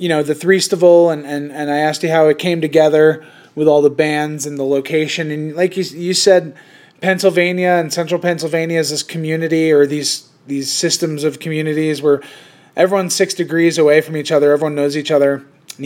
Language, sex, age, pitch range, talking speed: English, male, 20-39, 145-170 Hz, 200 wpm